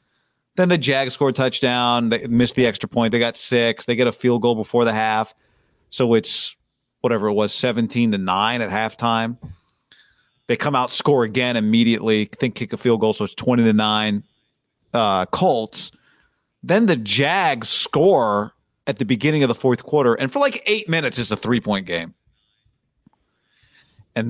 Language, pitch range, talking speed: English, 115-145 Hz, 175 wpm